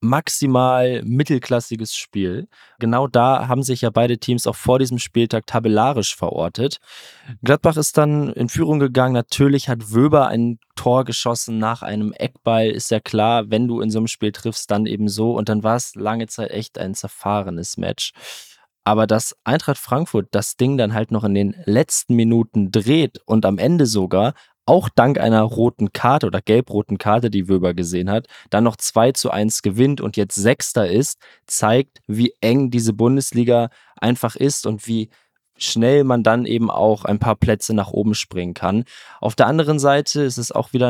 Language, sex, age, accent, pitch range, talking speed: German, male, 20-39, German, 110-130 Hz, 180 wpm